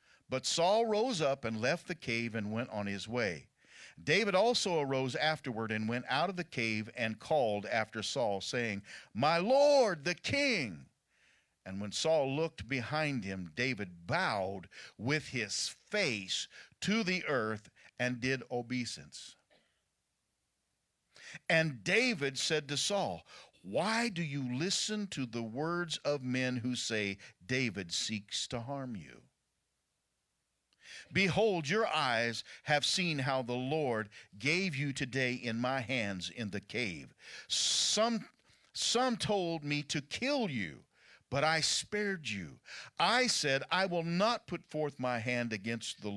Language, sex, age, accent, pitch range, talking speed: English, male, 50-69, American, 115-170 Hz, 140 wpm